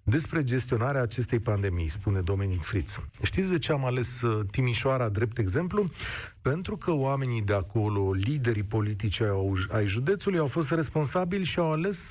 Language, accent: Romanian, native